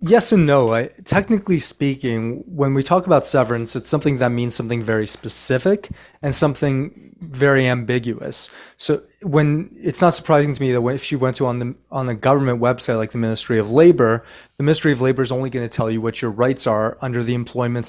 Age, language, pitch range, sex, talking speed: 30-49, English, 115-140 Hz, male, 205 wpm